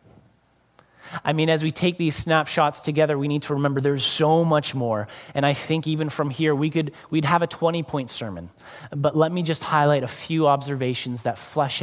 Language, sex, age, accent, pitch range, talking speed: English, male, 30-49, American, 135-165 Hz, 200 wpm